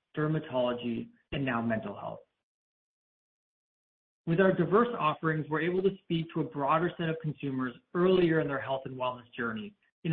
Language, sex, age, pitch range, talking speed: English, male, 30-49, 135-175 Hz, 160 wpm